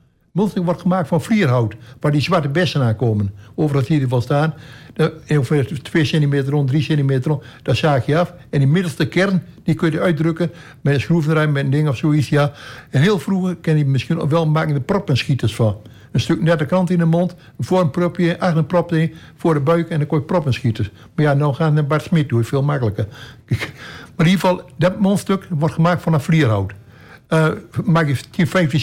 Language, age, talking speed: Dutch, 60-79, 220 wpm